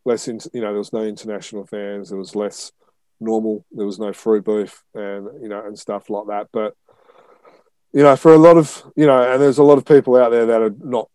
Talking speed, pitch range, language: 235 wpm, 100-130 Hz, English